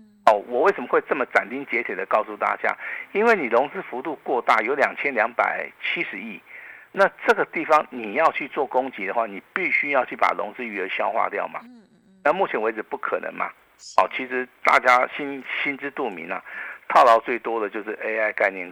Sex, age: male, 50-69